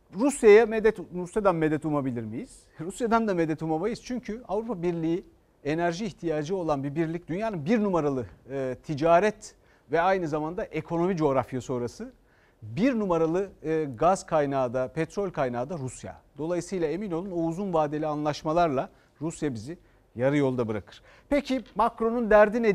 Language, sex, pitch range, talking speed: Turkish, male, 145-200 Hz, 140 wpm